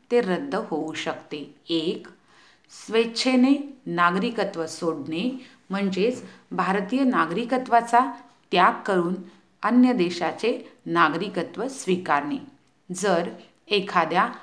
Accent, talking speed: native, 70 wpm